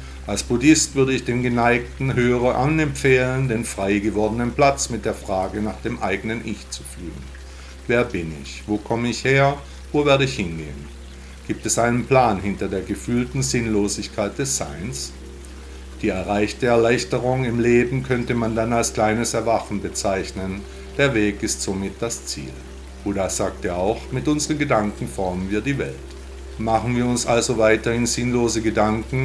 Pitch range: 85-120 Hz